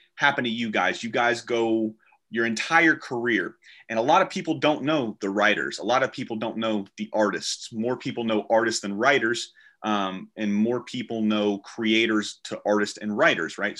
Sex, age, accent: male, 30-49, American